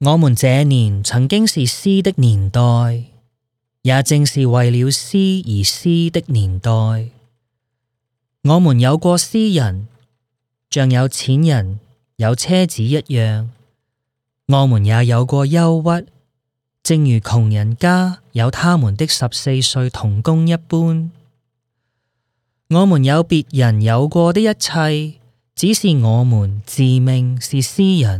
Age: 20-39